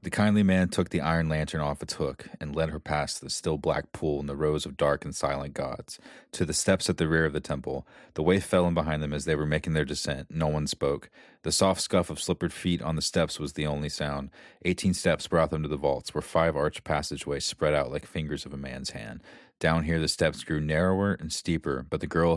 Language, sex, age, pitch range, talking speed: English, male, 30-49, 75-85 Hz, 250 wpm